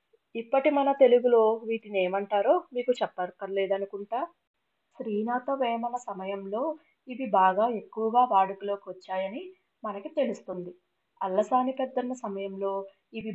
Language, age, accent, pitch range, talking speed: Telugu, 30-49, native, 195-250 Hz, 90 wpm